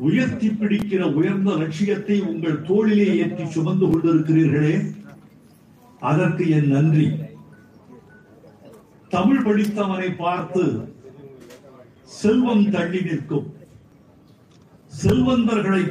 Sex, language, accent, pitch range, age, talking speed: male, Tamil, native, 170-210 Hz, 50-69, 70 wpm